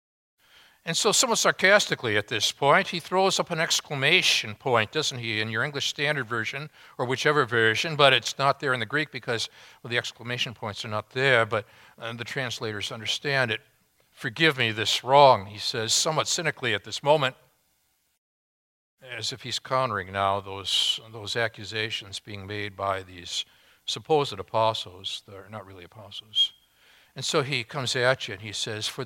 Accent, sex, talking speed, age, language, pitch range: American, male, 170 wpm, 60-79, English, 105-140 Hz